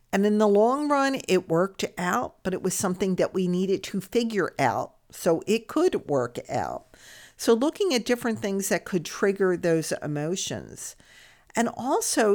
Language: English